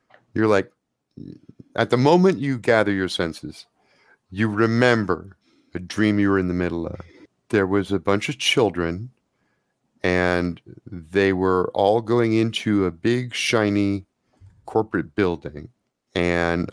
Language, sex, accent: English, male, American